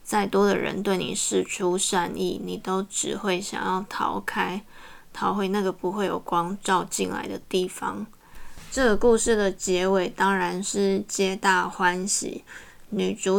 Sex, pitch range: female, 180-210 Hz